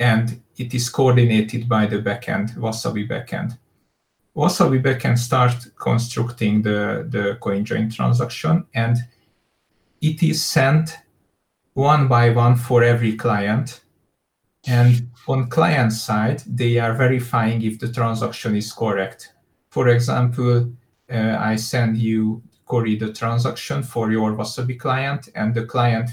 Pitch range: 110-130 Hz